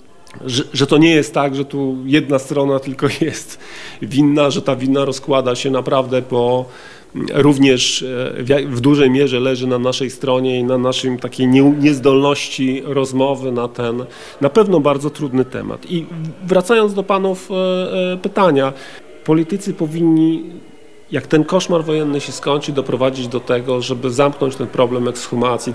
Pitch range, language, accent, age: 125-150 Hz, Polish, native, 40-59